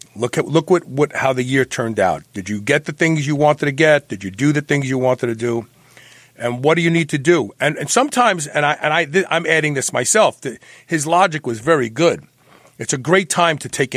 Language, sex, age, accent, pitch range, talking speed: English, male, 40-59, American, 125-165 Hz, 255 wpm